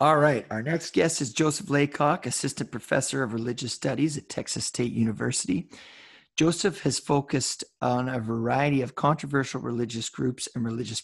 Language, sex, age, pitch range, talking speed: English, male, 30-49, 115-140 Hz, 160 wpm